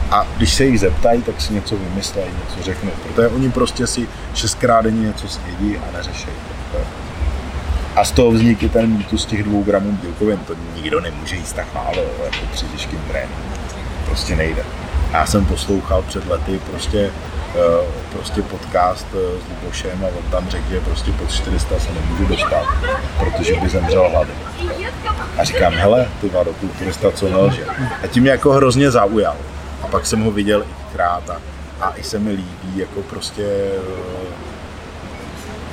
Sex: male